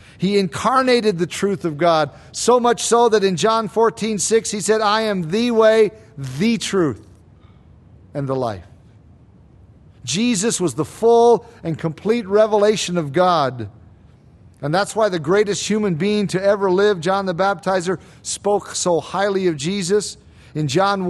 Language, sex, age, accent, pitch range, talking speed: English, male, 50-69, American, 165-210 Hz, 155 wpm